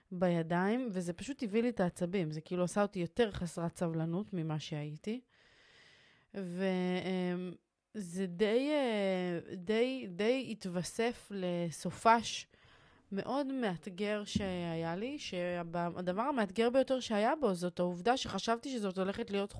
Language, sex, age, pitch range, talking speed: Hebrew, female, 30-49, 175-230 Hz, 115 wpm